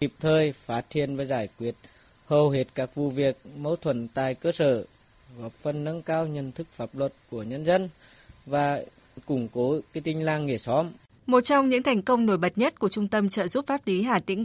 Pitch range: 180-235 Hz